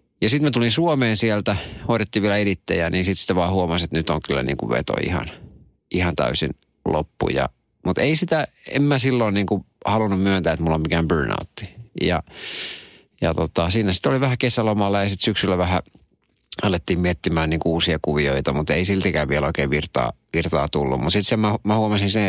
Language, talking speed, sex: Finnish, 190 wpm, male